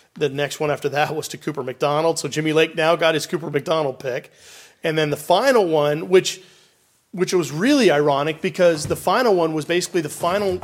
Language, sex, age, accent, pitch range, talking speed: English, male, 30-49, American, 150-180 Hz, 205 wpm